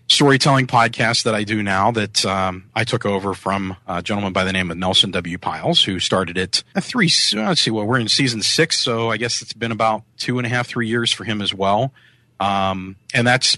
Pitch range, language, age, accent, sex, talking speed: 95-120 Hz, English, 40-59, American, male, 235 wpm